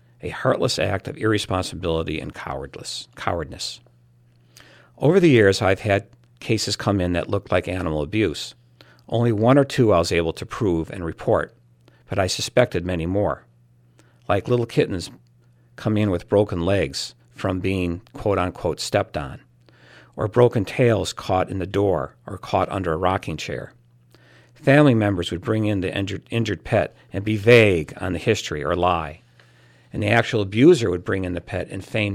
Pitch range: 80-110 Hz